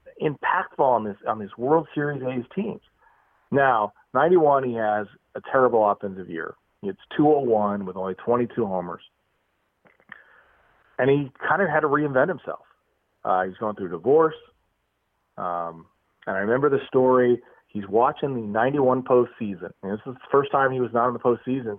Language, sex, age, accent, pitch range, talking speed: English, male, 40-59, American, 110-145 Hz, 170 wpm